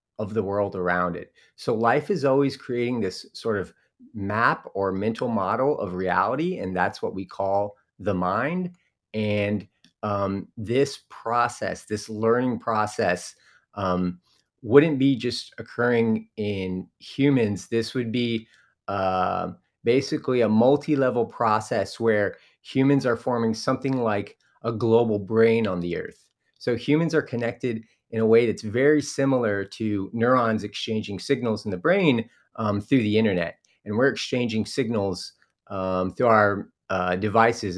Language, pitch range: English, 100-125 Hz